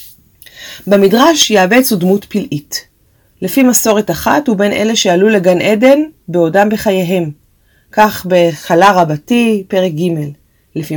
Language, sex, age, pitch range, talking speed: Hebrew, female, 30-49, 175-245 Hz, 115 wpm